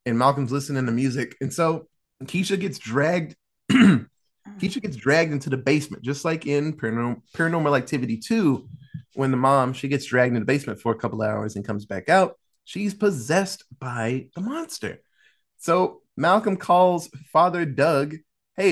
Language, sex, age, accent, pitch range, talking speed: English, male, 20-39, American, 115-170 Hz, 165 wpm